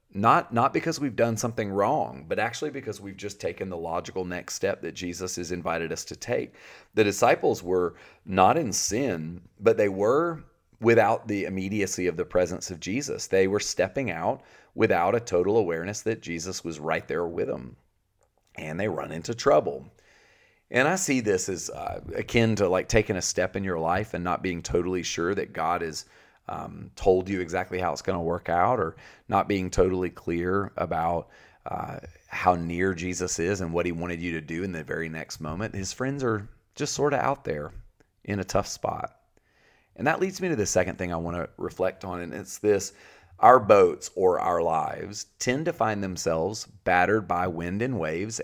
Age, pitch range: 40-59, 90-110 Hz